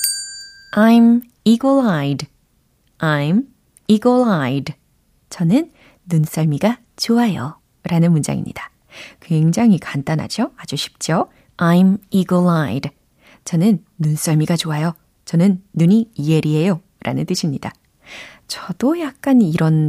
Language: Korean